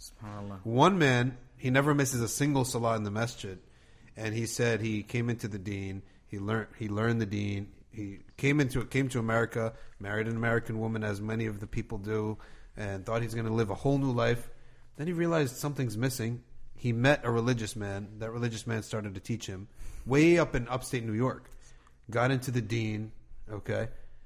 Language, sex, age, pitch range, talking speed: English, male, 30-49, 105-130 Hz, 195 wpm